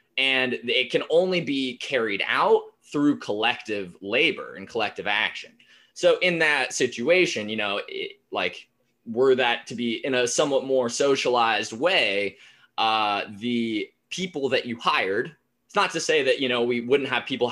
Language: English